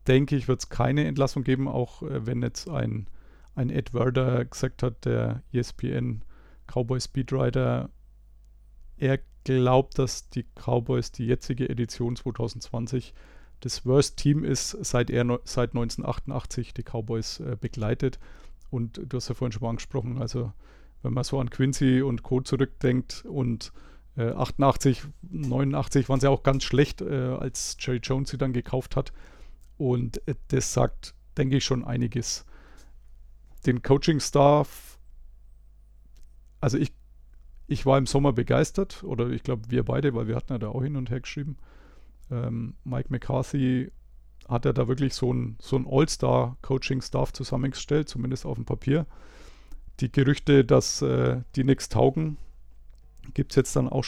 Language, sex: German, male